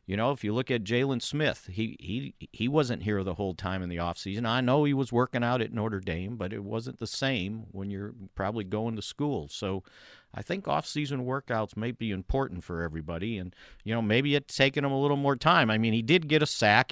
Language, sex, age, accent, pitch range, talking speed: English, male, 50-69, American, 95-135 Hz, 240 wpm